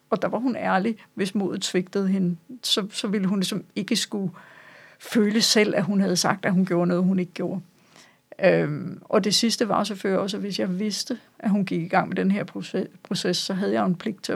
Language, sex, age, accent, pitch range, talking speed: Danish, female, 50-69, native, 185-215 Hz, 225 wpm